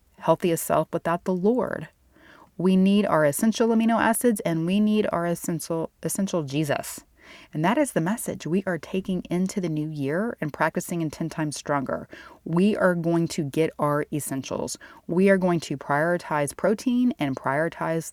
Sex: female